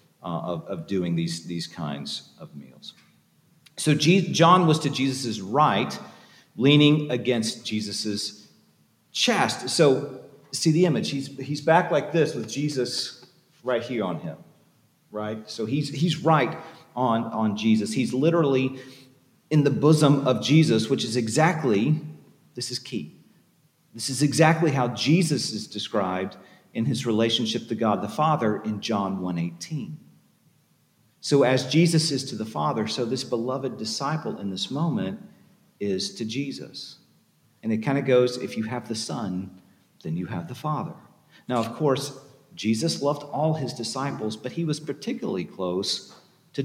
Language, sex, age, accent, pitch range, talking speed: English, male, 40-59, American, 115-165 Hz, 155 wpm